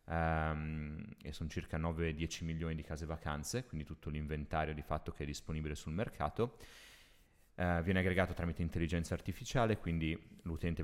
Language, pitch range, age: Italian, 80-95 Hz, 30-49